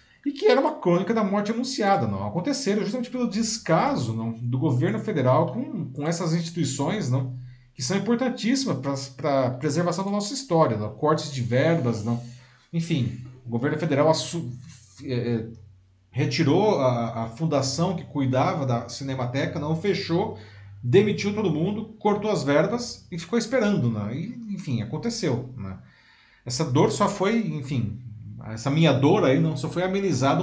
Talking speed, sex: 155 wpm, male